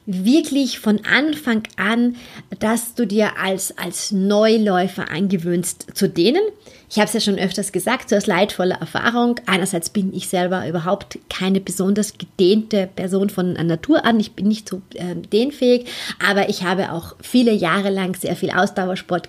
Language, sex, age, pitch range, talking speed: German, female, 30-49, 185-230 Hz, 160 wpm